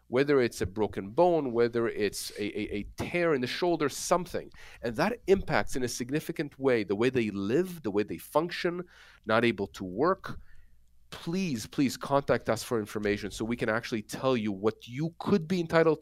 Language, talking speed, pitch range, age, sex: English, 190 wpm, 110-145 Hz, 30-49, male